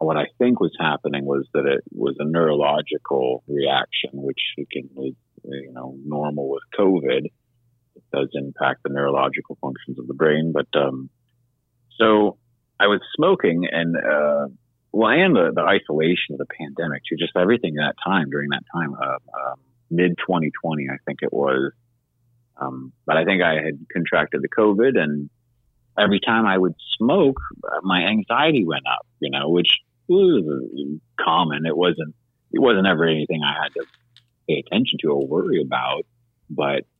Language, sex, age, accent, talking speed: English, male, 30-49, American, 165 wpm